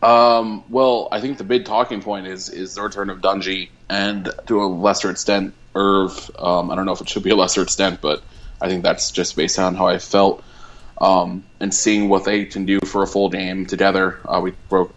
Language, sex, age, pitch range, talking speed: English, male, 20-39, 90-100 Hz, 225 wpm